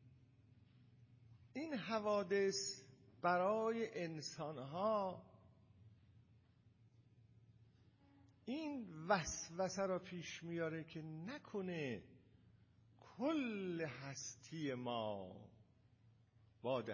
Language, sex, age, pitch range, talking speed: Persian, male, 50-69, 115-165 Hz, 55 wpm